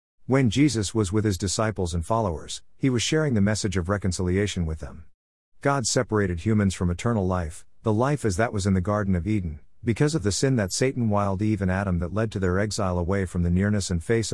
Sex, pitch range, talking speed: male, 90-115 Hz, 225 wpm